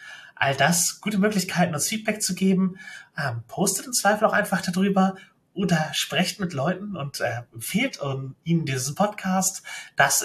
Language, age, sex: German, 30-49, male